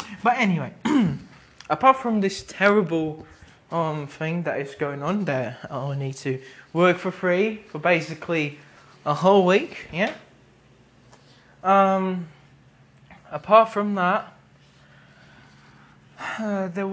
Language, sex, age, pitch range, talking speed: English, male, 20-39, 155-190 Hz, 115 wpm